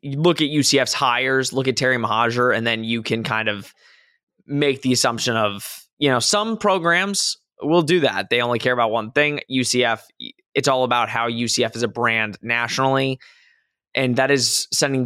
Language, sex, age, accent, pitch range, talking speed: English, male, 20-39, American, 115-145 Hz, 185 wpm